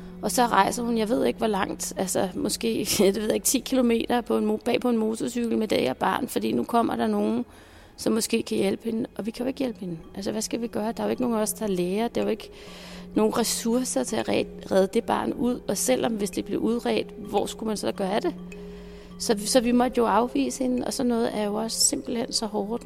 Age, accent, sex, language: 30-49, native, female, Danish